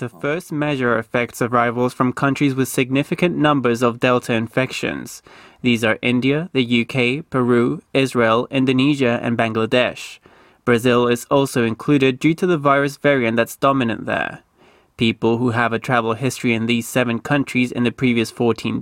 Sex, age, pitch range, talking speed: male, 20-39, 120-145 Hz, 155 wpm